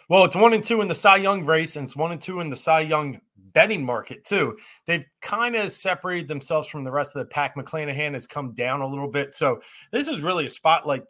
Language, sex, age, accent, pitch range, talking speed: English, male, 30-49, American, 140-180 Hz, 250 wpm